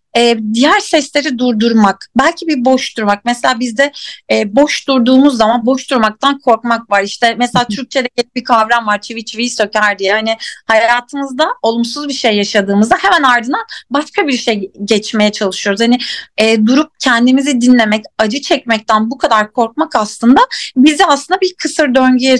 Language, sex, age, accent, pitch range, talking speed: Turkish, female, 30-49, native, 210-265 Hz, 145 wpm